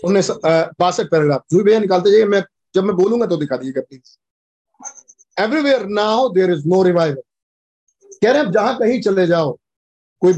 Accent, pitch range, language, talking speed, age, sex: native, 160-205 Hz, Hindi, 155 wpm, 50-69, male